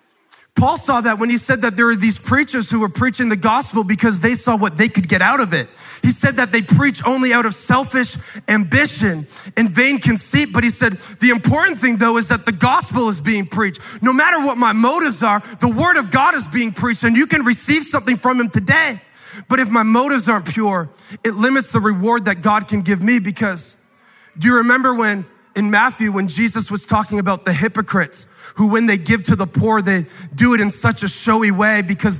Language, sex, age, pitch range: English, male, 20-39, 195-235 Hz